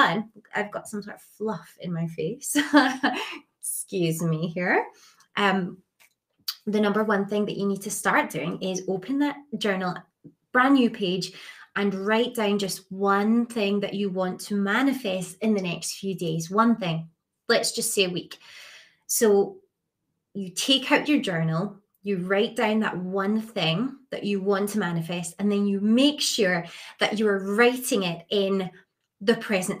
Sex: female